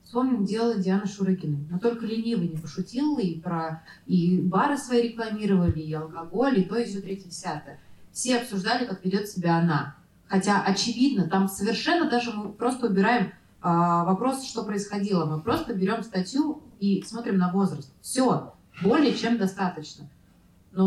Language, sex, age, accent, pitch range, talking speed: Russian, female, 20-39, native, 175-225 Hz, 155 wpm